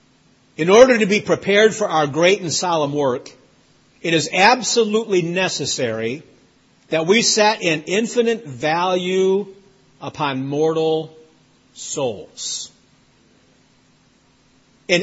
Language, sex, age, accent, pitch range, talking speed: English, male, 50-69, American, 150-200 Hz, 100 wpm